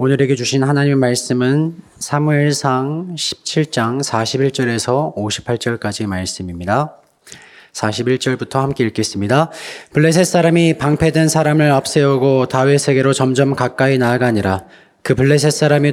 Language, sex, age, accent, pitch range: Korean, male, 20-39, native, 125-150 Hz